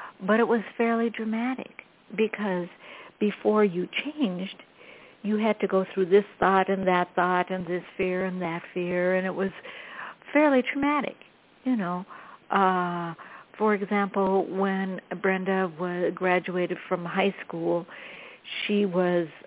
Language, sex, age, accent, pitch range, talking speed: English, female, 60-79, American, 175-210 Hz, 135 wpm